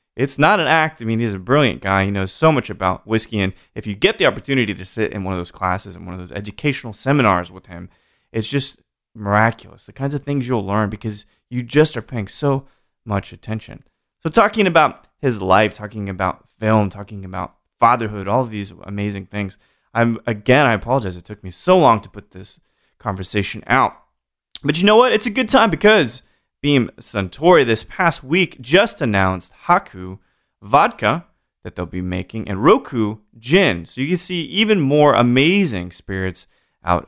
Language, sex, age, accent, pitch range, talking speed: English, male, 20-39, American, 100-145 Hz, 190 wpm